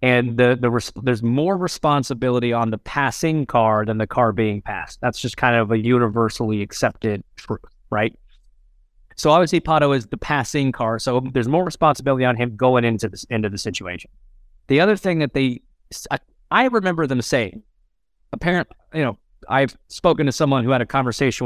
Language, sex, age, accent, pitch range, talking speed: English, male, 30-49, American, 110-135 Hz, 180 wpm